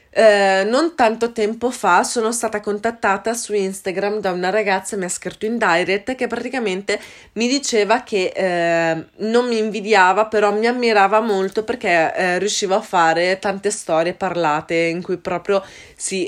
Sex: female